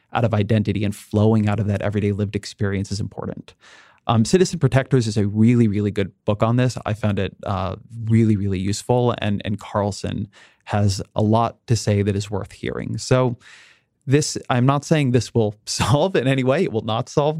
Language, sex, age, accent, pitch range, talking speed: English, male, 30-49, American, 105-125 Hz, 205 wpm